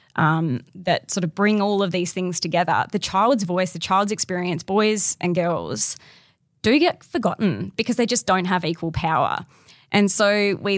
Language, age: English, 20-39